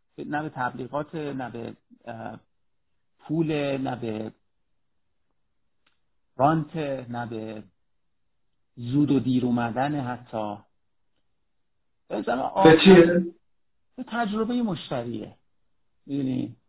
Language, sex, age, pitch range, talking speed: Persian, male, 50-69, 120-155 Hz, 75 wpm